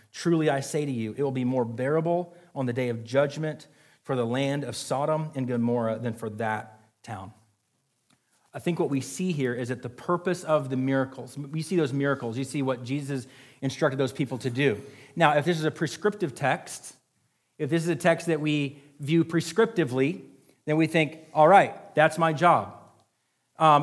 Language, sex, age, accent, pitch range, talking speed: English, male, 30-49, American, 135-170 Hz, 195 wpm